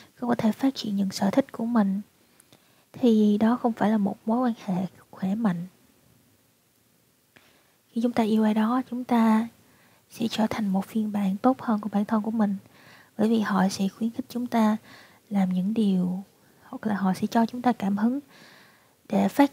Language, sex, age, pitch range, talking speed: Vietnamese, female, 20-39, 195-230 Hz, 195 wpm